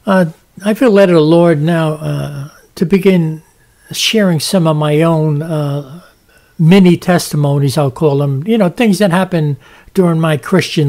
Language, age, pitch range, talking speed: English, 60-79, 145-185 Hz, 160 wpm